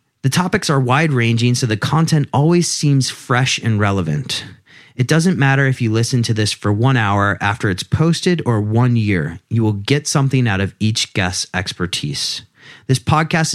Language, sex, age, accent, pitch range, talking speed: English, male, 30-49, American, 110-145 Hz, 175 wpm